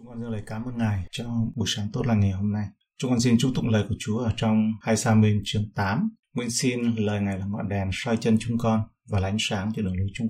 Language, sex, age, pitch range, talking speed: Vietnamese, male, 20-39, 105-125 Hz, 285 wpm